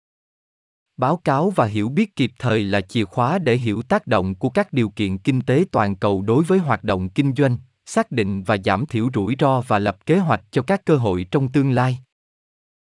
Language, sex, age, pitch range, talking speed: Vietnamese, male, 20-39, 110-150 Hz, 215 wpm